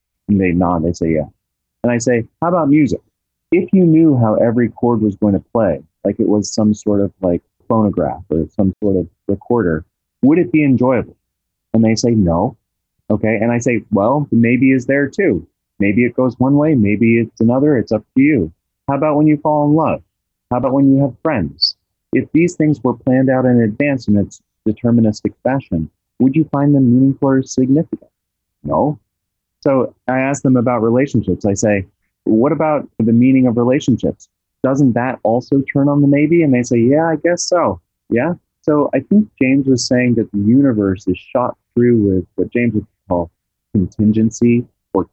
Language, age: English, 30-49